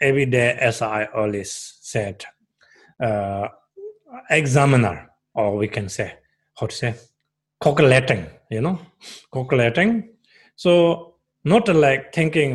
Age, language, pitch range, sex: 30-49, English, 120-160 Hz, male